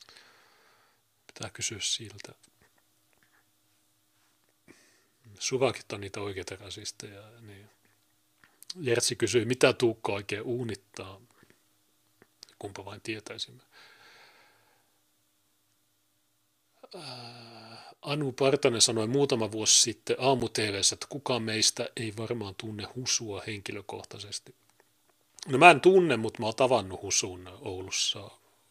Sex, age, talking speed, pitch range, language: male, 40-59, 90 wpm, 100-130 Hz, Finnish